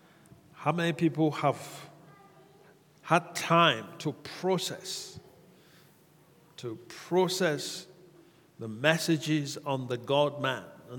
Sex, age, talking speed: male, 60-79, 95 wpm